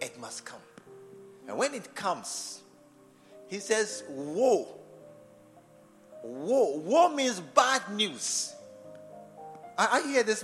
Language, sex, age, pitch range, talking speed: English, male, 50-69, 145-245 Hz, 105 wpm